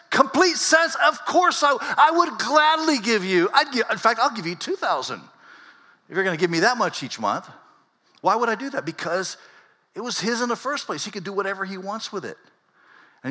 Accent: American